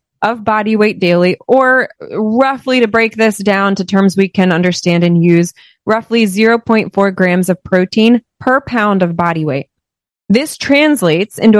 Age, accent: 30-49, American